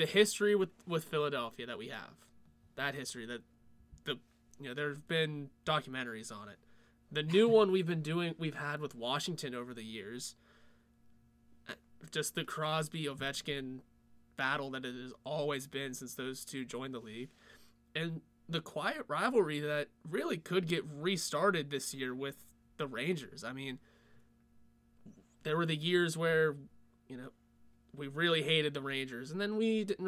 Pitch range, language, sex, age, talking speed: 125-160 Hz, English, male, 20-39, 160 wpm